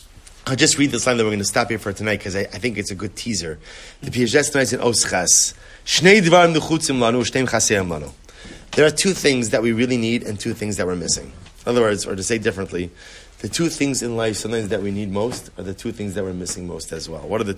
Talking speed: 245 wpm